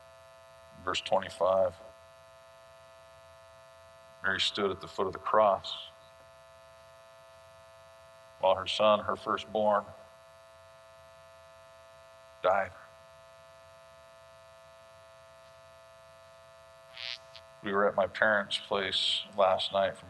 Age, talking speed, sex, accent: 50-69, 75 wpm, male, American